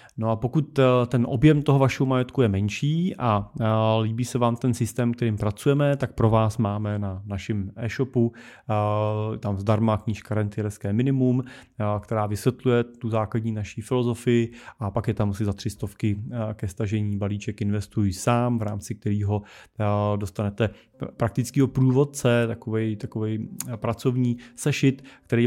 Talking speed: 140 wpm